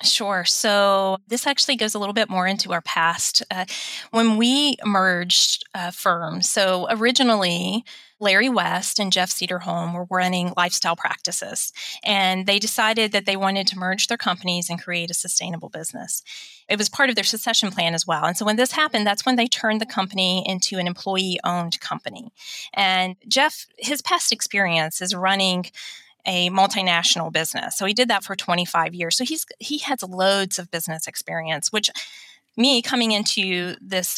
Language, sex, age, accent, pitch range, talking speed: English, female, 30-49, American, 180-225 Hz, 170 wpm